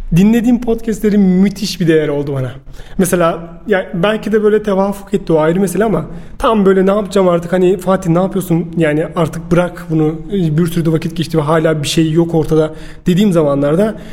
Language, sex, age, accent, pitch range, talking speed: Turkish, male, 30-49, native, 165-215 Hz, 190 wpm